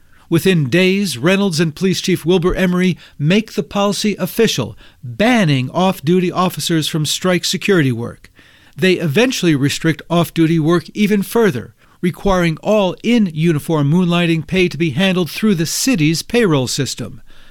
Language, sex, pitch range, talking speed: English, male, 150-190 Hz, 135 wpm